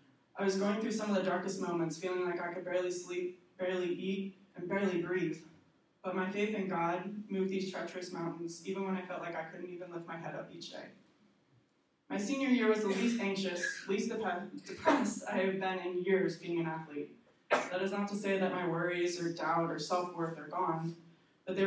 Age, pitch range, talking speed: 20-39, 165-190 Hz, 210 wpm